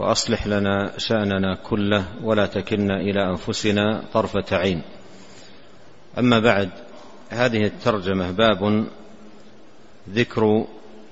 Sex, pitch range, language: male, 105-115 Hz, Arabic